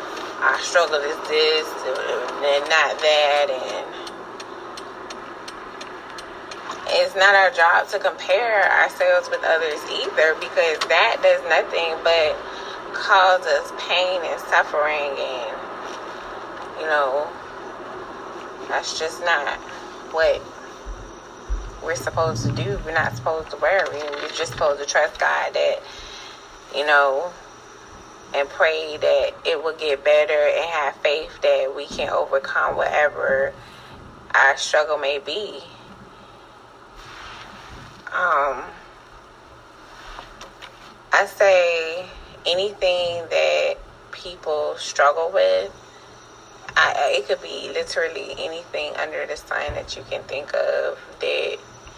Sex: female